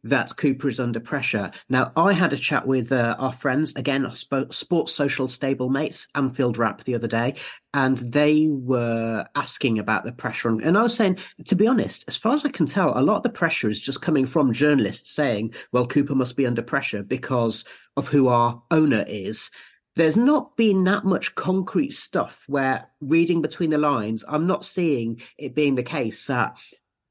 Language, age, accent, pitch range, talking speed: English, 40-59, British, 130-160 Hz, 195 wpm